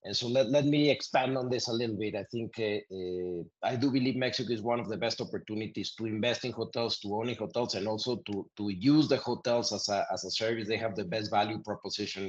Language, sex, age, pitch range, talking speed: English, male, 30-49, 100-120 Hz, 250 wpm